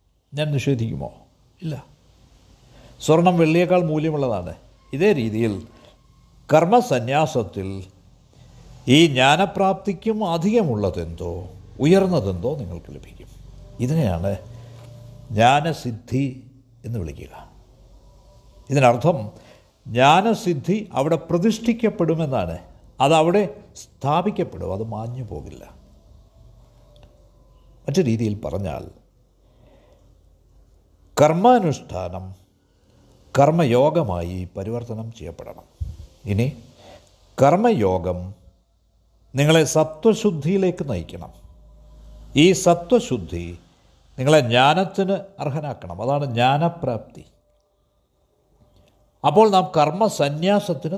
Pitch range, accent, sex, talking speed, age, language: 95-165 Hz, native, male, 60 wpm, 60-79, Malayalam